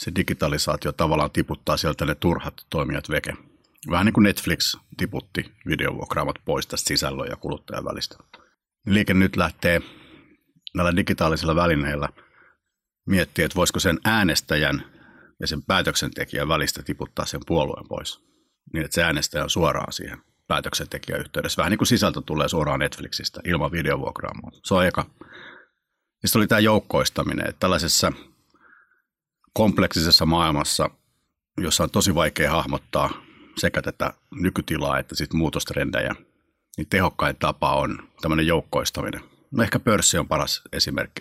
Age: 60-79